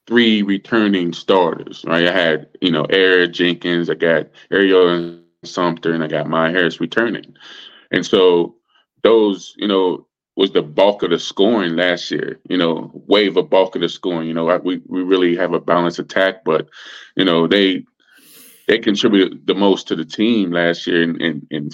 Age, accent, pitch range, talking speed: 20-39, American, 85-105 Hz, 190 wpm